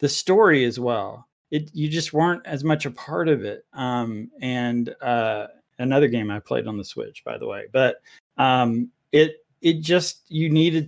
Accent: American